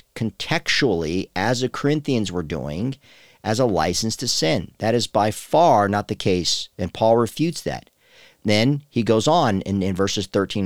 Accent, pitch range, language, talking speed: American, 95-125 Hz, English, 170 wpm